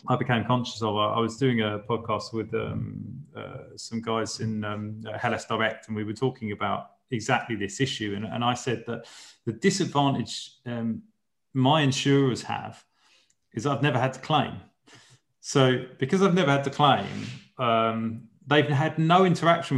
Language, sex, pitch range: English, male, 115-140 Hz